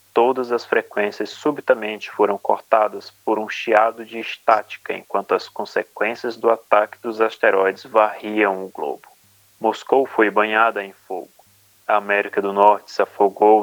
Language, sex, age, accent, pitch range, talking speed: Portuguese, male, 30-49, Brazilian, 100-115 Hz, 140 wpm